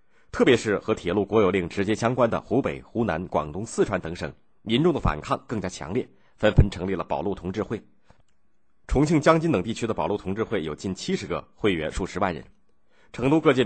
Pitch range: 90-125 Hz